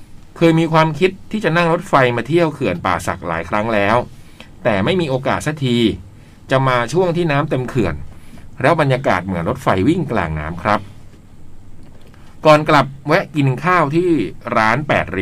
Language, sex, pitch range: Thai, male, 100-140 Hz